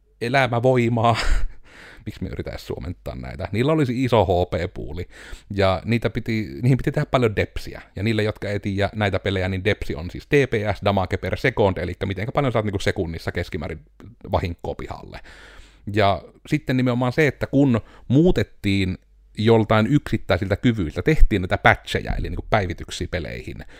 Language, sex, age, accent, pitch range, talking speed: Finnish, male, 30-49, native, 90-120 Hz, 145 wpm